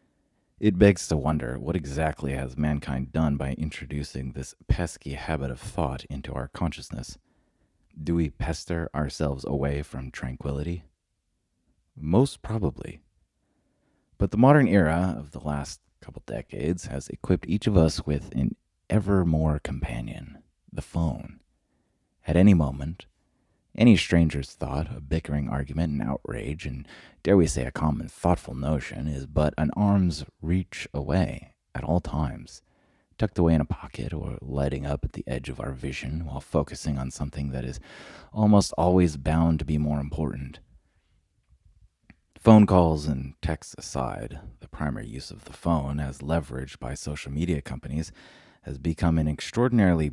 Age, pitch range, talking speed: 30-49, 70-85 Hz, 150 wpm